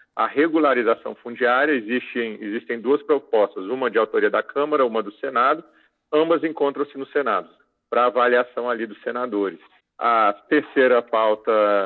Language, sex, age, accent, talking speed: Portuguese, male, 40-59, Brazilian, 135 wpm